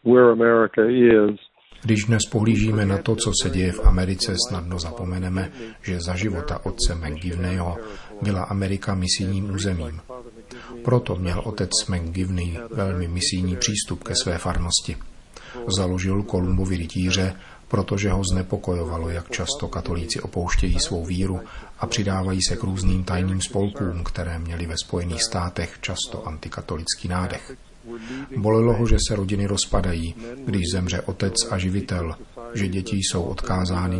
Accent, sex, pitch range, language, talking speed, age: native, male, 90-105 Hz, Czech, 130 wpm, 40-59